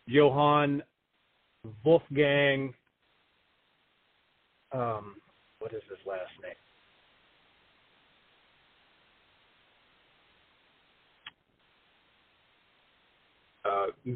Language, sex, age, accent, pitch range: English, male, 40-59, American, 115-150 Hz